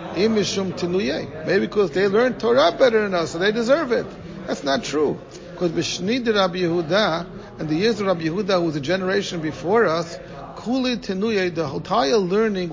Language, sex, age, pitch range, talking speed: English, male, 50-69, 170-215 Hz, 175 wpm